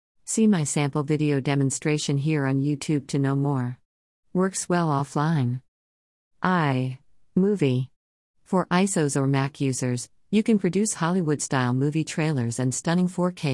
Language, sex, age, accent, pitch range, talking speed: English, female, 50-69, American, 130-160 Hz, 130 wpm